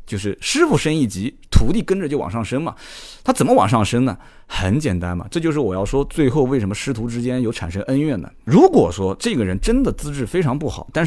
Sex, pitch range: male, 105-170 Hz